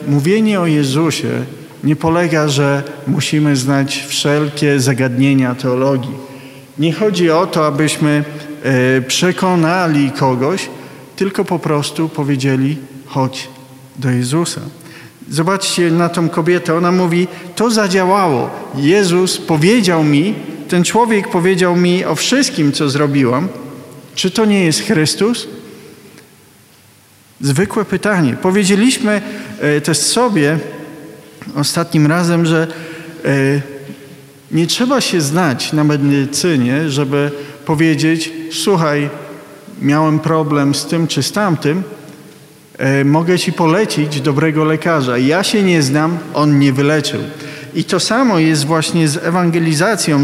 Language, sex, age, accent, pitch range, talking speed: Polish, male, 40-59, native, 145-180 Hz, 110 wpm